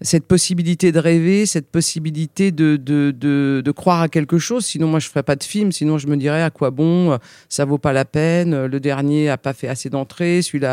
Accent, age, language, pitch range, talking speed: French, 50-69, French, 140-175 Hz, 230 wpm